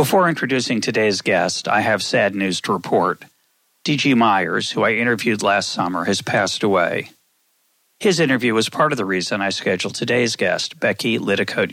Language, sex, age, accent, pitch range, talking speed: English, male, 40-59, American, 105-140 Hz, 170 wpm